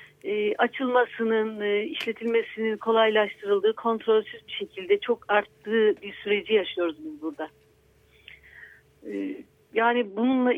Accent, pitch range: native, 220-275 Hz